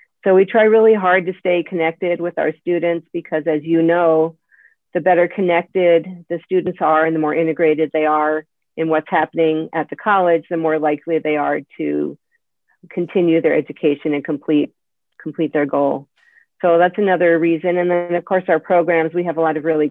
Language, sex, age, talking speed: English, female, 40-59, 190 wpm